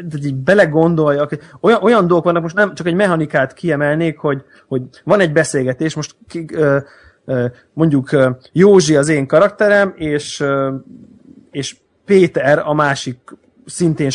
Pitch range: 145-185 Hz